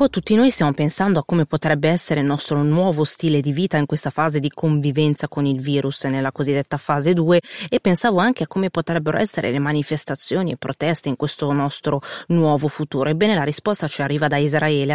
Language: Italian